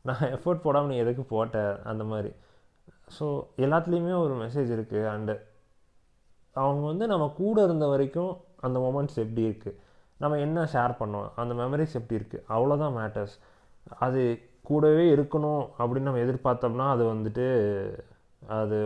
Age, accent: 20-39, native